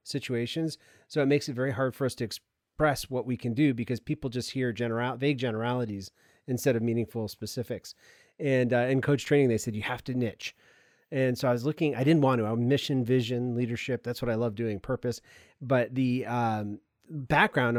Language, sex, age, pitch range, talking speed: English, male, 30-49, 115-135 Hz, 200 wpm